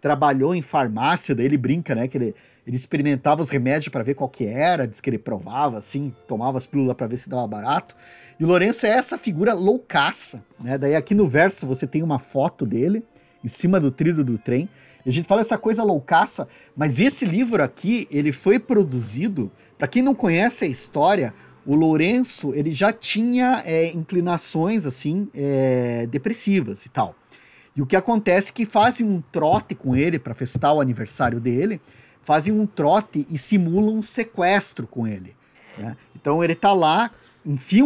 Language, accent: Portuguese, Brazilian